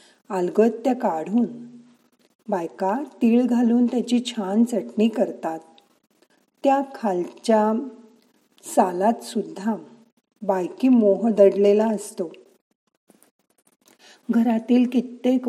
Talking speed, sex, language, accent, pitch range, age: 75 wpm, female, Marathi, native, 190-235 Hz, 40-59